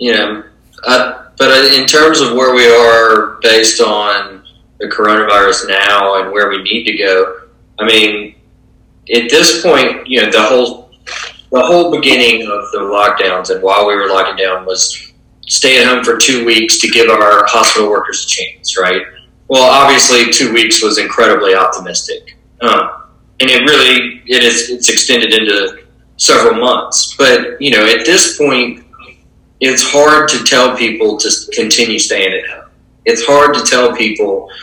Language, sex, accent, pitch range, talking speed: English, male, American, 110-150 Hz, 165 wpm